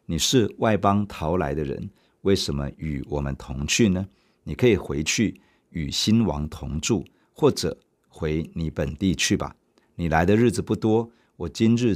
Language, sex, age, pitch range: Chinese, male, 50-69, 75-100 Hz